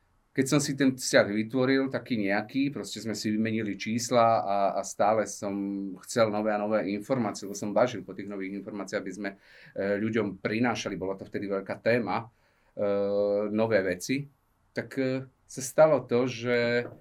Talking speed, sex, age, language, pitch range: 170 wpm, male, 30-49, Slovak, 100-120 Hz